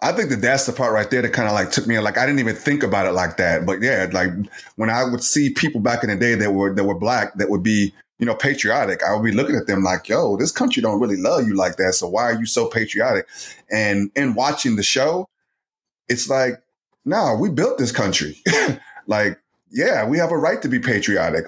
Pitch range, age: 100-130 Hz, 30-49